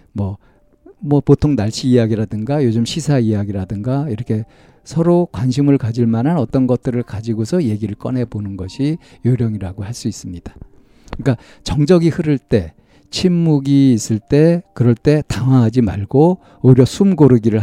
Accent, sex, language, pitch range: native, male, Korean, 105-140 Hz